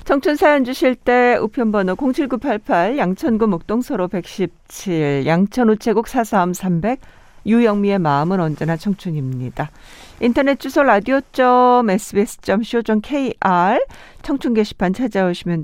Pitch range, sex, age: 175-230 Hz, female, 50-69